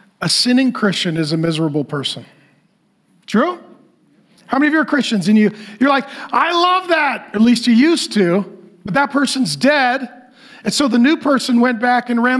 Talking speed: 185 wpm